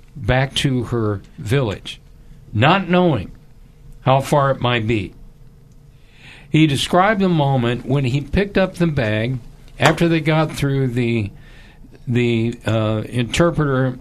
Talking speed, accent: 125 wpm, American